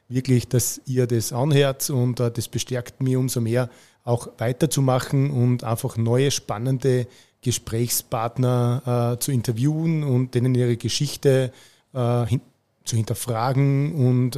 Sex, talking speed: male, 120 wpm